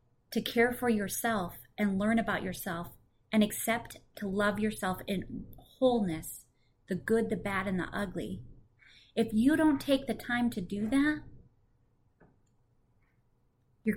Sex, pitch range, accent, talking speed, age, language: female, 160-205 Hz, American, 135 wpm, 30-49, English